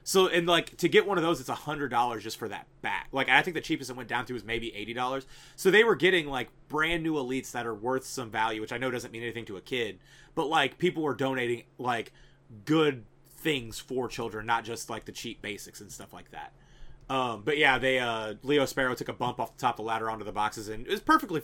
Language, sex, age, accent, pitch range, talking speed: English, male, 30-49, American, 120-145 Hz, 250 wpm